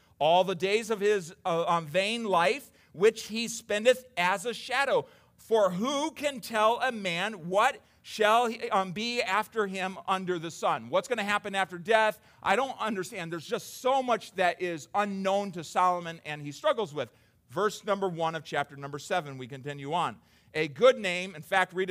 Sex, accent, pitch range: male, American, 140-190 Hz